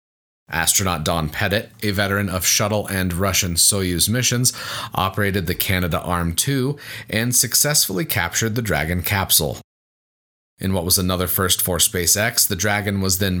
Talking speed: 145 wpm